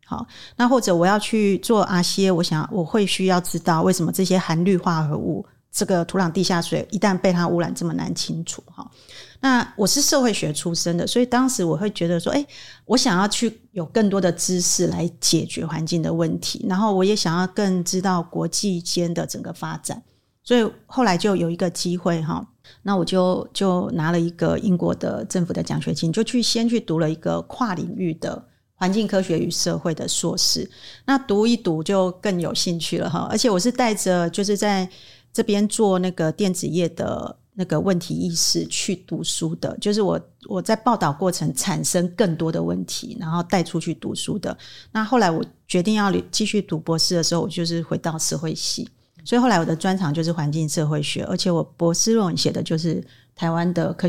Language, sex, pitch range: Chinese, female, 170-205 Hz